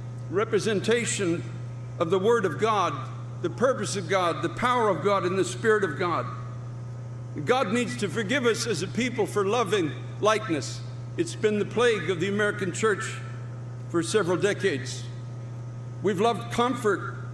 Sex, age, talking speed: male, 60-79, 150 wpm